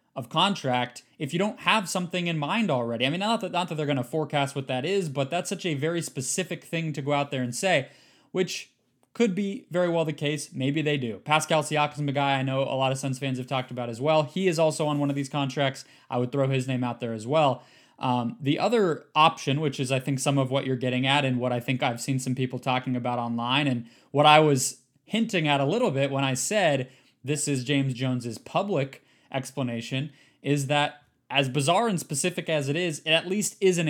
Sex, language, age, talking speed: male, English, 20-39, 240 wpm